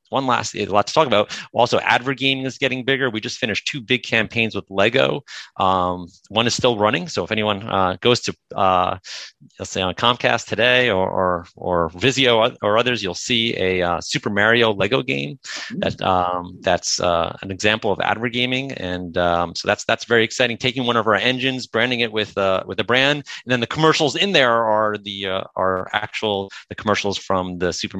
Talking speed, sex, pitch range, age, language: 200 wpm, male, 95-120 Hz, 30-49, English